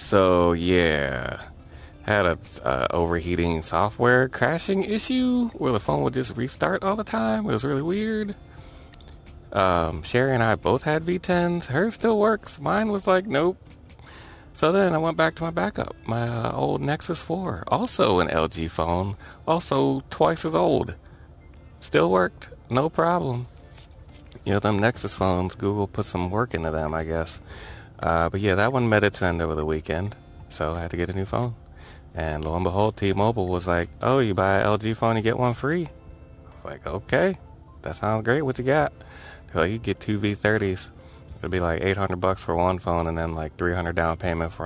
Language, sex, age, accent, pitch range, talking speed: English, male, 30-49, American, 85-120 Hz, 185 wpm